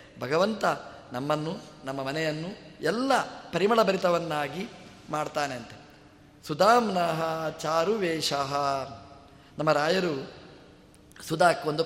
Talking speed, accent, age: 70 wpm, native, 20-39